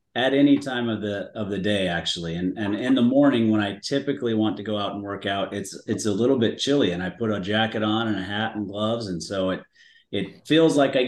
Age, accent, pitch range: 30-49, American, 105-125 Hz